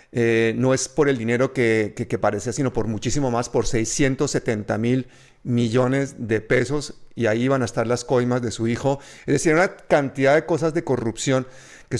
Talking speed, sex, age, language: 195 wpm, male, 40-59, Spanish